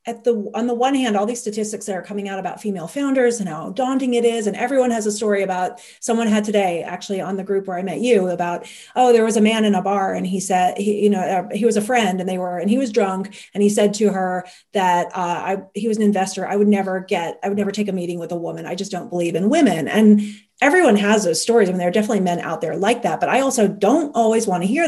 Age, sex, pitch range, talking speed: 30-49, female, 185-220 Hz, 285 wpm